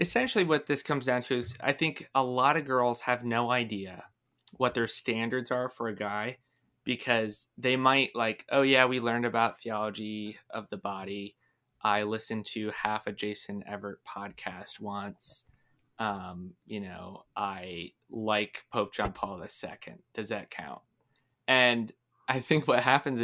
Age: 20-39